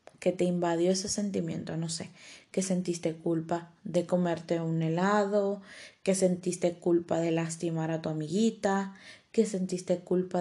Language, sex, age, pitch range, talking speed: Spanish, female, 20-39, 175-205 Hz, 145 wpm